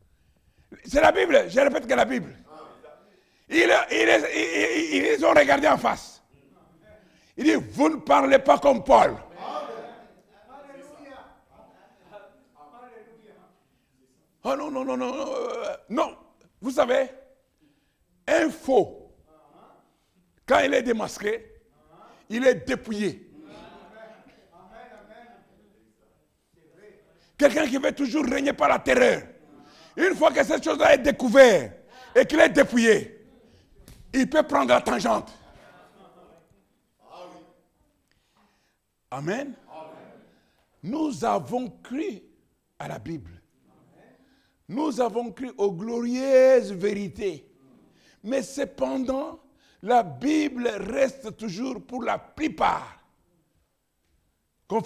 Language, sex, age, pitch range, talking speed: French, male, 60-79, 210-280 Hz, 100 wpm